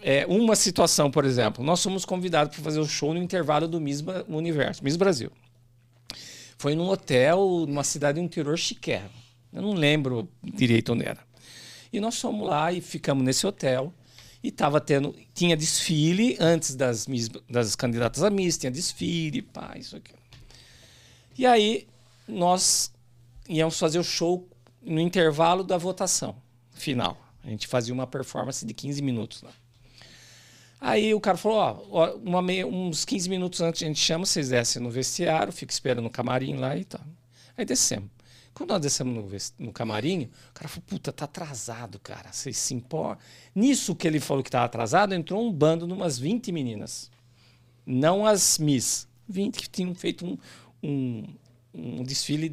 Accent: Brazilian